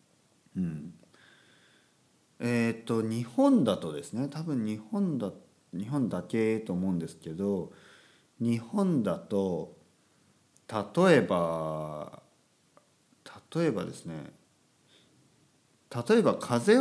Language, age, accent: Japanese, 40-59, native